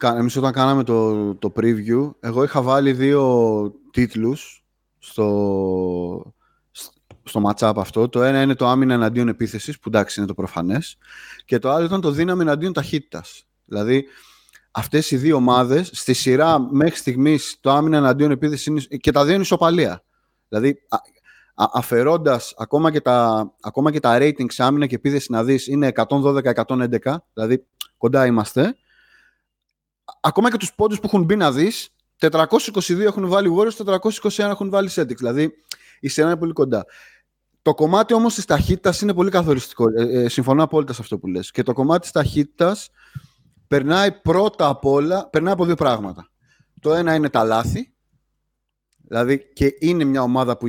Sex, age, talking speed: male, 30-49, 160 wpm